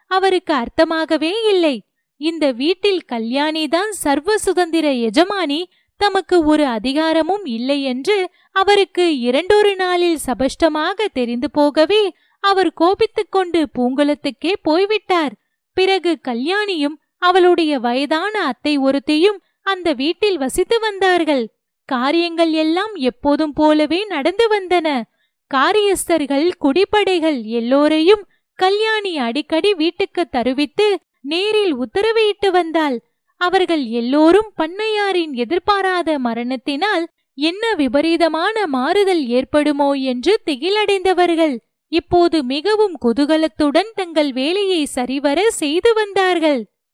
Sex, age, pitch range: female, 20-39, 290-385 Hz